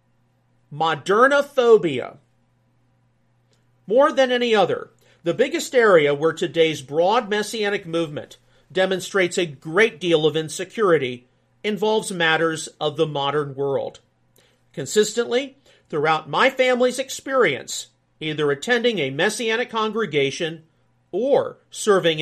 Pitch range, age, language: 150-225 Hz, 40-59, English